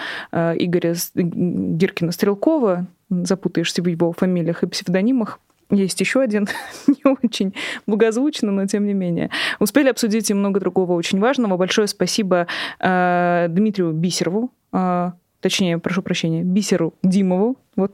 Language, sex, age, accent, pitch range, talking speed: Russian, female, 20-39, native, 180-220 Hz, 125 wpm